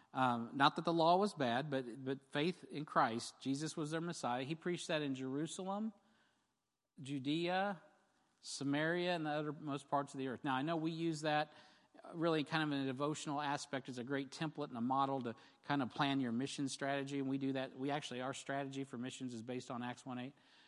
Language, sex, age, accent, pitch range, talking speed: English, male, 50-69, American, 130-155 Hz, 215 wpm